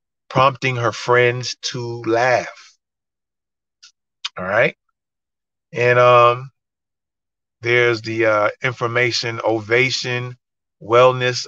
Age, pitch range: 30-49, 110-130 Hz